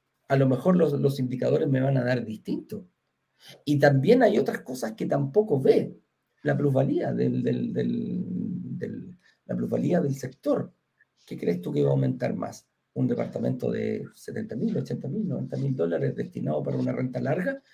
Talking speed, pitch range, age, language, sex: 165 wpm, 125-195 Hz, 40-59, Spanish, male